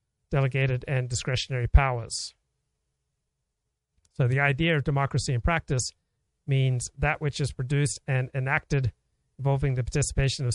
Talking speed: 125 wpm